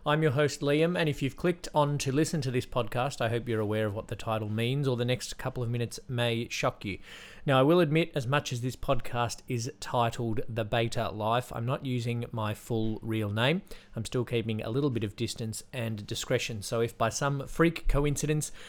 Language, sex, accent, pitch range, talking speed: English, male, Australian, 110-135 Hz, 220 wpm